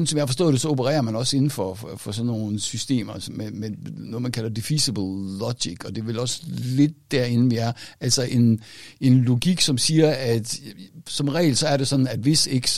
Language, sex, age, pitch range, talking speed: Danish, male, 60-79, 110-145 Hz, 220 wpm